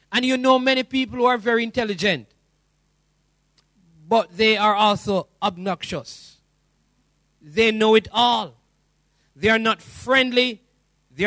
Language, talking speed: English, 120 wpm